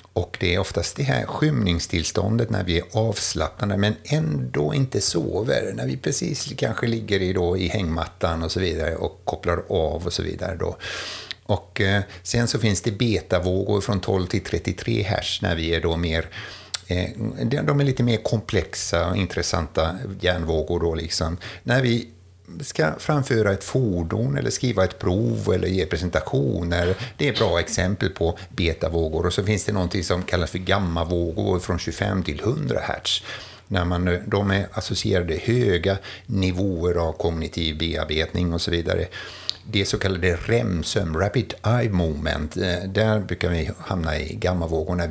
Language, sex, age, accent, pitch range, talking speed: Swedish, male, 60-79, native, 85-105 Hz, 155 wpm